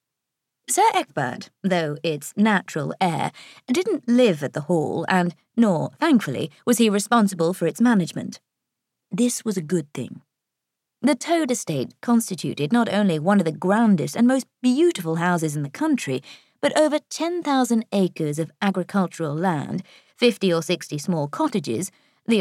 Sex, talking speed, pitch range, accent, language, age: female, 145 wpm, 165-240 Hz, British, English, 30-49